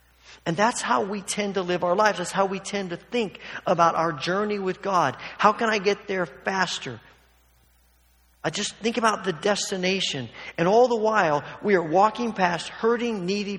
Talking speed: 185 wpm